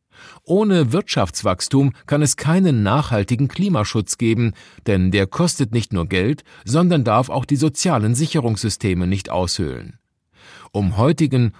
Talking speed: 125 wpm